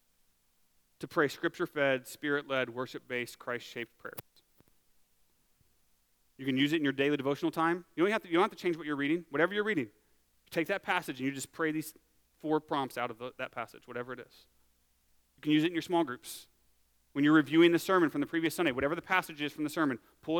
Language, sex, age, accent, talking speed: English, male, 30-49, American, 205 wpm